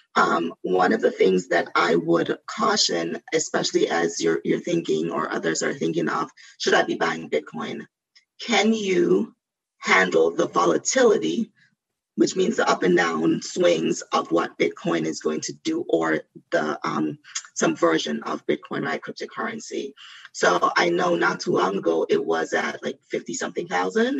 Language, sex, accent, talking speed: English, female, American, 165 wpm